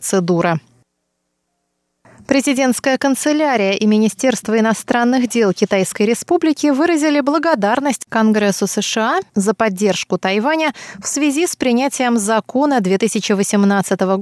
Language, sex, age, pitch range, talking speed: Russian, female, 20-39, 190-255 Hz, 90 wpm